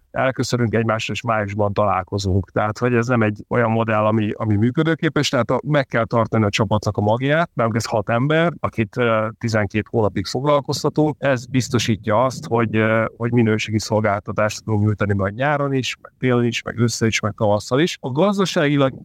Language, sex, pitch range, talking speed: Hungarian, male, 110-135 Hz, 170 wpm